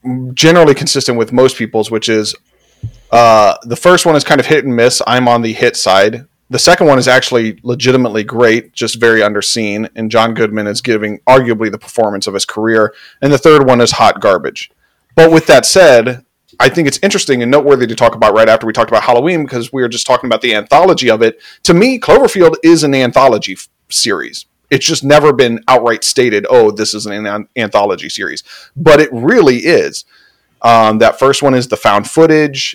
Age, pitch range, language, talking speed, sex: 40-59, 110-135 Hz, English, 205 wpm, male